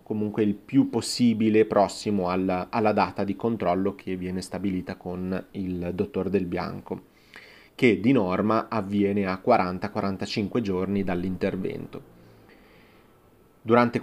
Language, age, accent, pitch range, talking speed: Italian, 30-49, native, 95-115 Hz, 115 wpm